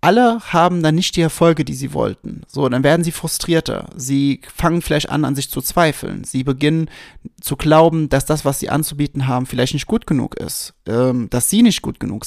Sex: male